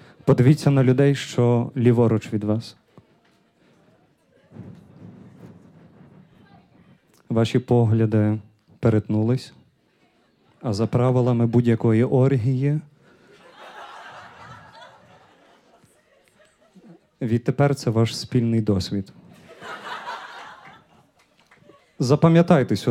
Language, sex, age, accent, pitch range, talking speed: Ukrainian, male, 30-49, native, 115-140 Hz, 55 wpm